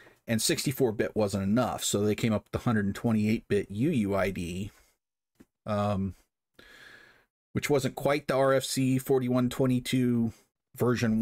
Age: 40-59